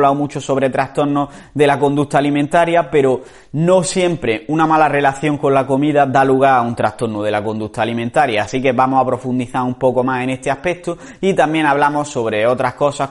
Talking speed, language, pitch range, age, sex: 195 wpm, Spanish, 115-145 Hz, 30-49, male